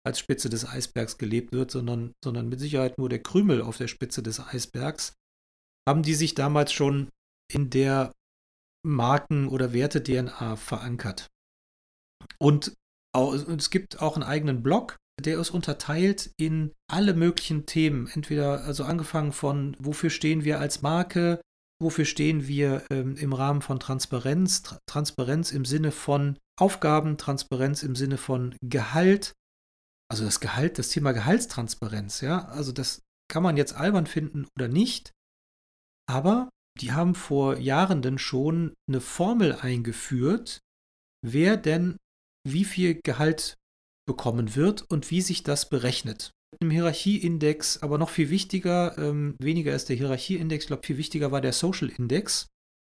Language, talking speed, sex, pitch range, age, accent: German, 145 wpm, male, 130-160 Hz, 40-59, German